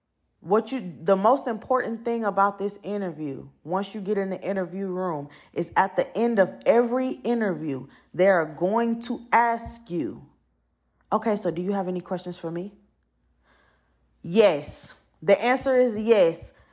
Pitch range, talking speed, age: 195-260 Hz, 155 wpm, 20-39